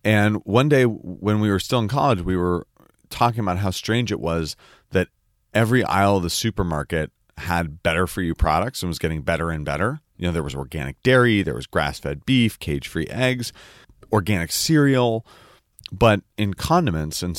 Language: English